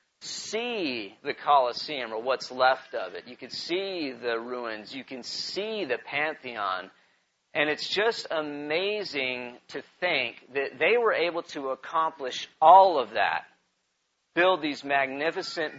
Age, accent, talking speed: 40-59, American, 135 wpm